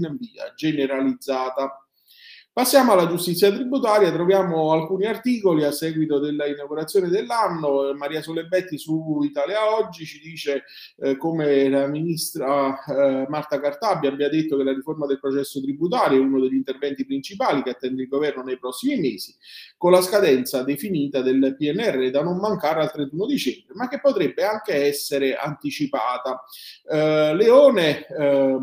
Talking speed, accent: 145 wpm, native